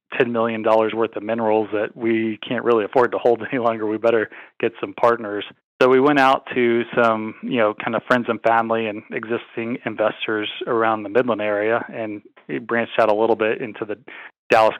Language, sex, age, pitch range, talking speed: English, male, 30-49, 110-120 Hz, 205 wpm